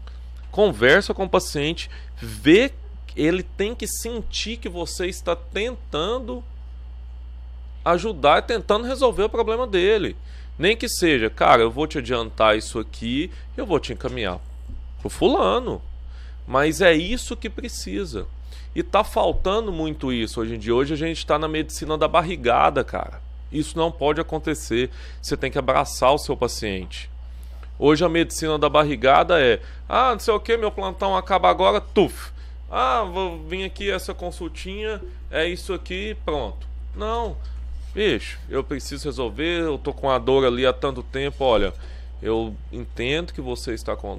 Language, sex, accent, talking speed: Portuguese, male, Brazilian, 155 wpm